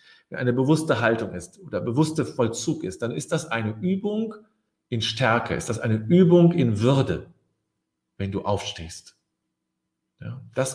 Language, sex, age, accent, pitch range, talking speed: German, male, 50-69, German, 110-160 Hz, 145 wpm